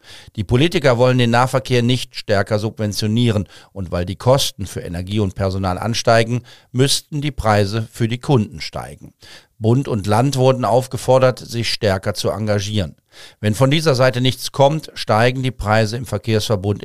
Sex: male